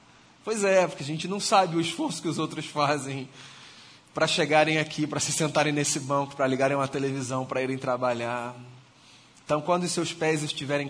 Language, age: Portuguese, 20-39